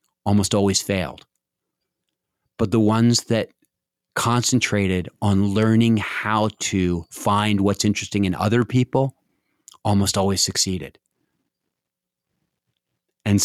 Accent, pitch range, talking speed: American, 100-115 Hz, 100 wpm